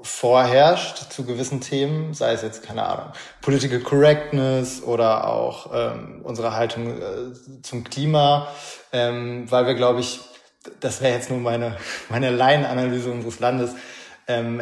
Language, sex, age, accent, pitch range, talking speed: German, male, 20-39, German, 120-130 Hz, 140 wpm